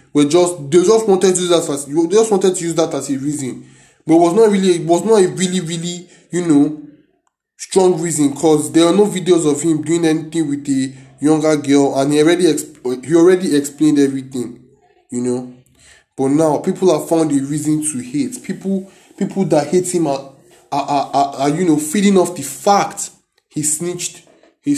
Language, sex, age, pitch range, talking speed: English, male, 20-39, 140-195 Hz, 205 wpm